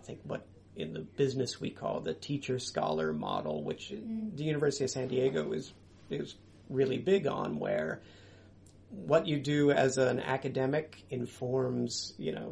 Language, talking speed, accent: English, 160 wpm, American